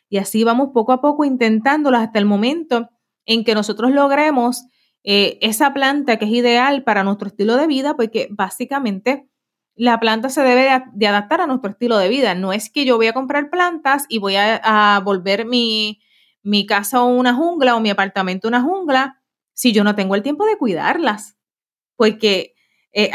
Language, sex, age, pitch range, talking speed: Spanish, female, 30-49, 205-265 Hz, 190 wpm